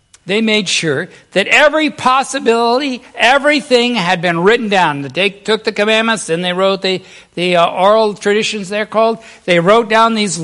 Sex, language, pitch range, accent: male, English, 195-240 Hz, American